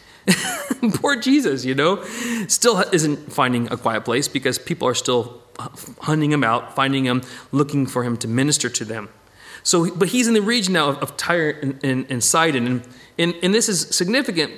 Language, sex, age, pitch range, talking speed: English, male, 40-59, 130-180 Hz, 185 wpm